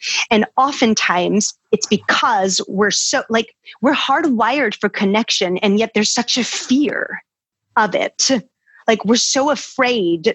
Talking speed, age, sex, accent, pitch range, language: 135 wpm, 30-49, female, American, 205-250 Hz, English